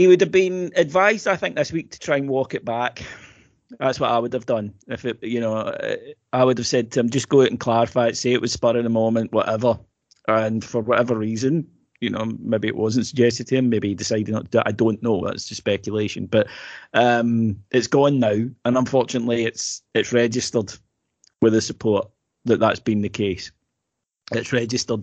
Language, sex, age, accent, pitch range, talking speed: English, male, 30-49, British, 110-130 Hz, 215 wpm